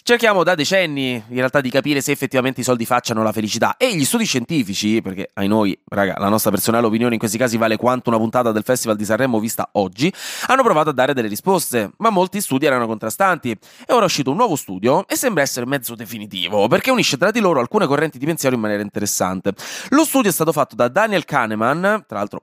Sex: male